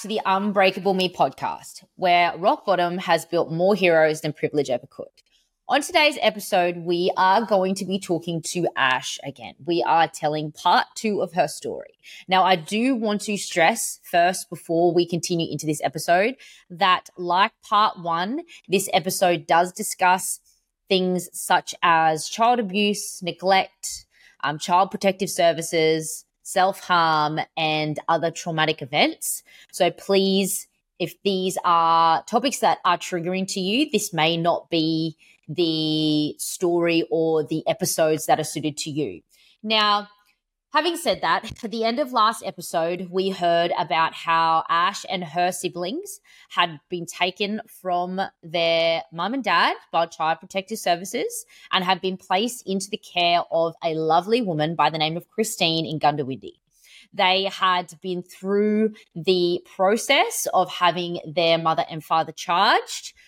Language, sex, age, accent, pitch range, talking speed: English, female, 20-39, Australian, 165-195 Hz, 150 wpm